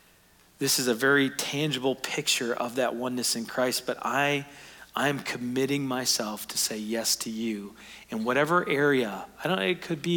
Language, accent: English, American